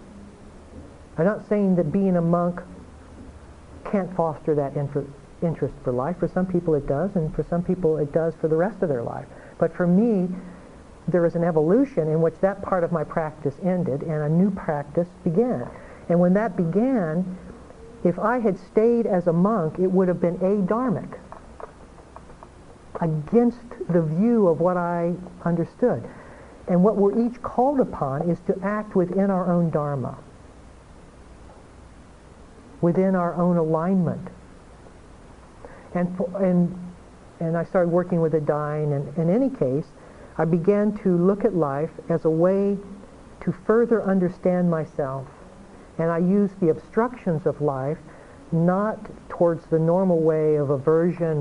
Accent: American